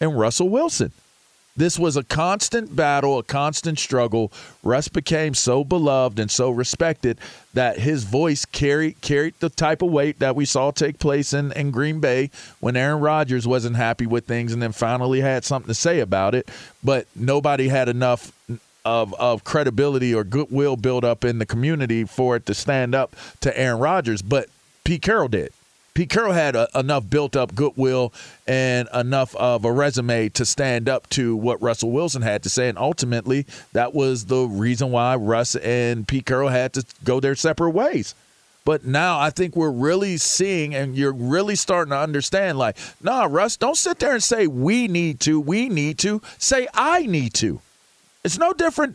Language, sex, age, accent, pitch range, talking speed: English, male, 40-59, American, 125-165 Hz, 185 wpm